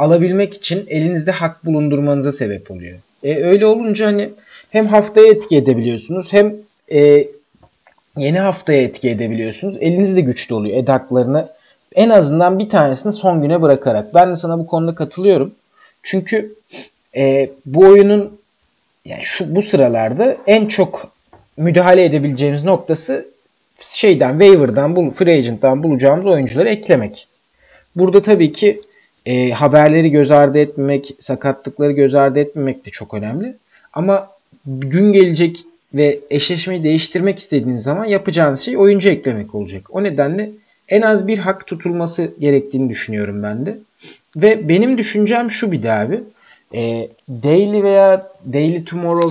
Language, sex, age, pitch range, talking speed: Turkish, male, 40-59, 135-195 Hz, 135 wpm